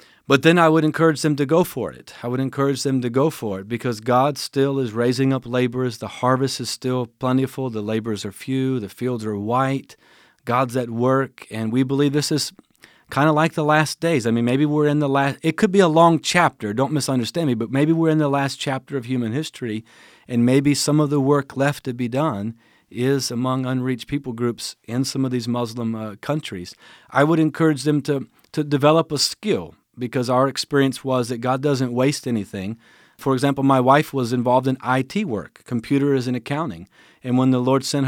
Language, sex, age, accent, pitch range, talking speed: English, male, 40-59, American, 115-140 Hz, 210 wpm